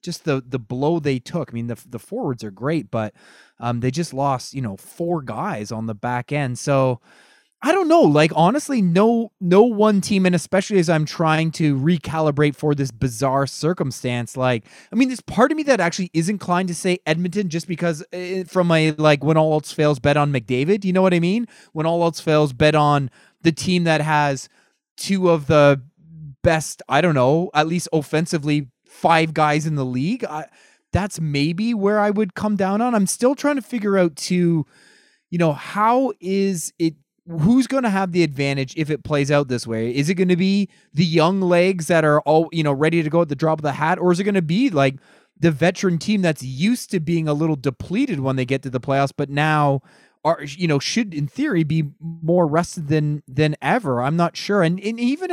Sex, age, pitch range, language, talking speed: male, 20-39, 145-185 Hz, English, 220 wpm